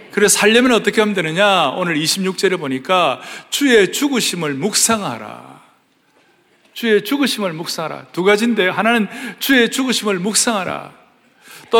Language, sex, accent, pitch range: Korean, male, native, 180-235 Hz